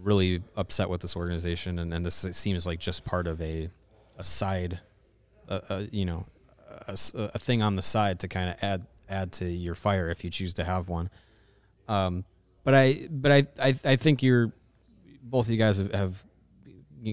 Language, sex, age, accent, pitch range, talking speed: English, male, 30-49, American, 90-105 Hz, 200 wpm